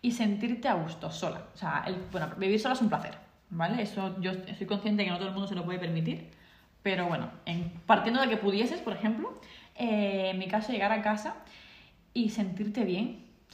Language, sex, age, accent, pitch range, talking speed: Spanish, female, 20-39, Spanish, 175-220 Hz, 215 wpm